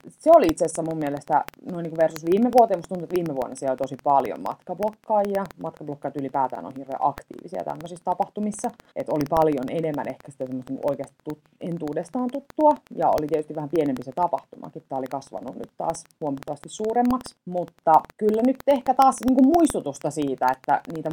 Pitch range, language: 140-190 Hz, Finnish